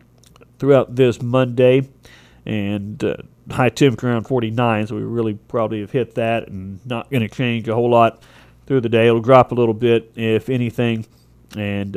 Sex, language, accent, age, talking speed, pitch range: male, English, American, 40-59, 175 wpm, 110-135 Hz